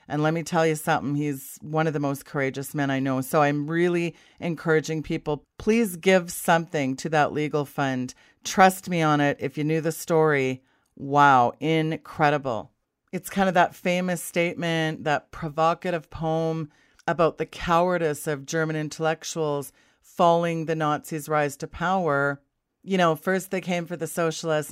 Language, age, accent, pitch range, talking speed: English, 40-59, American, 145-170 Hz, 165 wpm